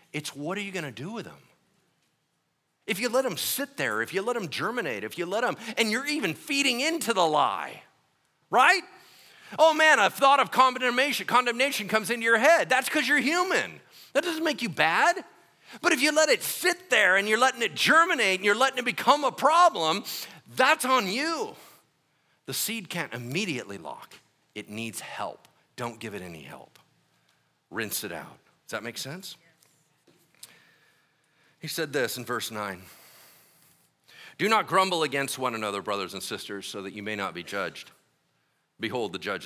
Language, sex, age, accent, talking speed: English, male, 40-59, American, 180 wpm